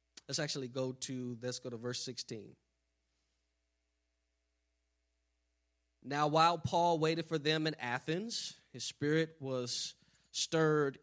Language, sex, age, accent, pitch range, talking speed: English, male, 20-39, American, 120-160 Hz, 115 wpm